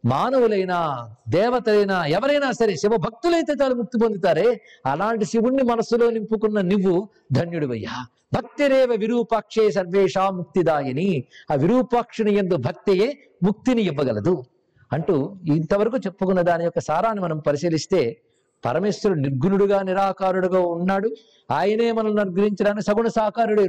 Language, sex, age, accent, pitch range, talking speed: Telugu, male, 50-69, native, 175-230 Hz, 105 wpm